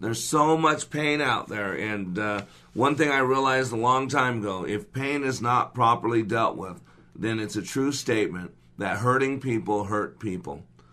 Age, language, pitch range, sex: 50-69, English, 105-145 Hz, male